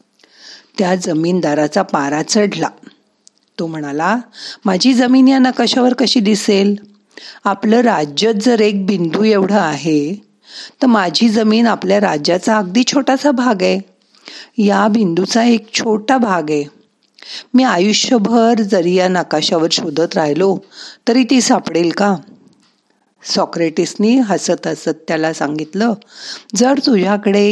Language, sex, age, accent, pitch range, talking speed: Marathi, female, 50-69, native, 175-235 Hz, 115 wpm